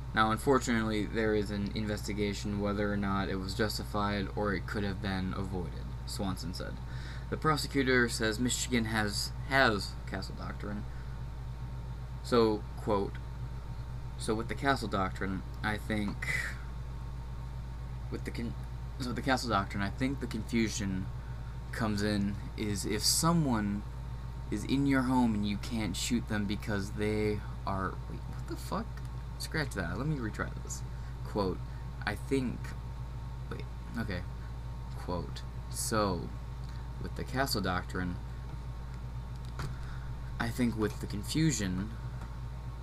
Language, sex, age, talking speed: English, male, 20-39, 125 wpm